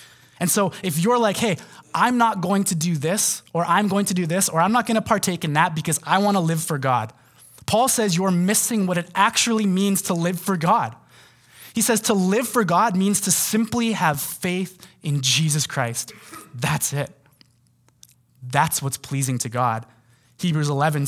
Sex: male